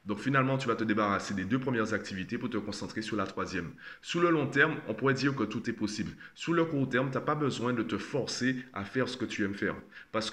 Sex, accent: male, French